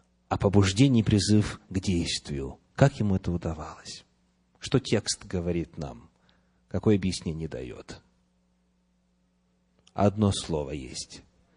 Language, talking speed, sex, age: English, 105 wpm, male, 30-49